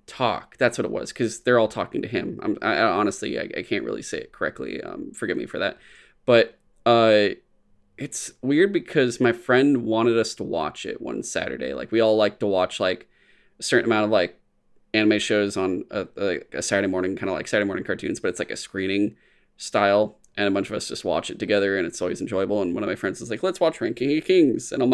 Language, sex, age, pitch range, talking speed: English, male, 20-39, 110-150 Hz, 235 wpm